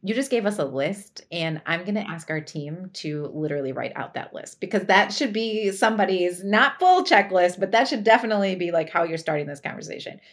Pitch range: 175-235 Hz